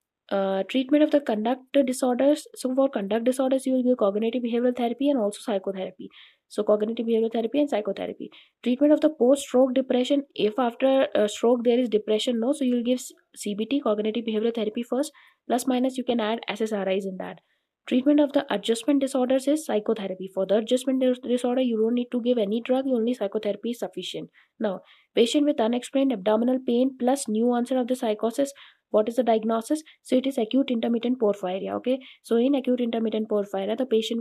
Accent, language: Indian, English